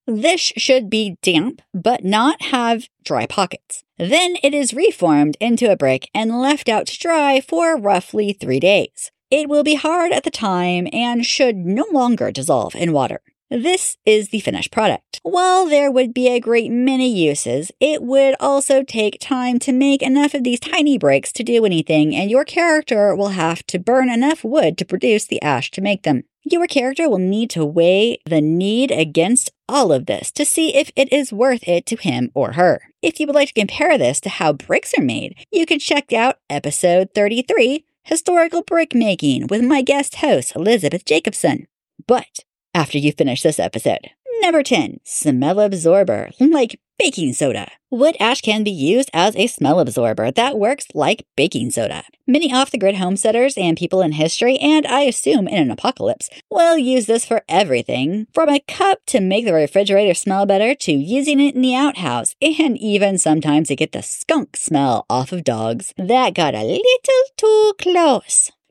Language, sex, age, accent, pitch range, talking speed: English, female, 40-59, American, 195-290 Hz, 185 wpm